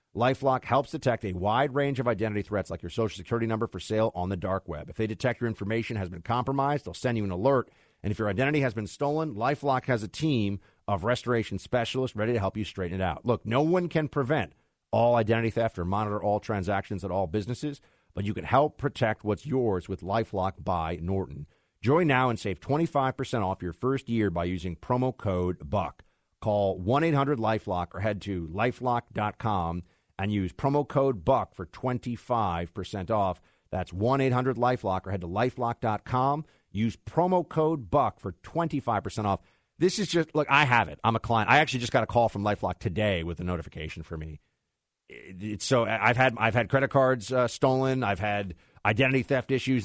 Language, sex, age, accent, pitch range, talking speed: English, male, 40-59, American, 95-130 Hz, 190 wpm